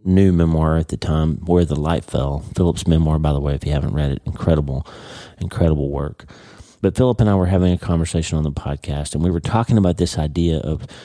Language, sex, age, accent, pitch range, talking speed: English, male, 40-59, American, 80-95 Hz, 225 wpm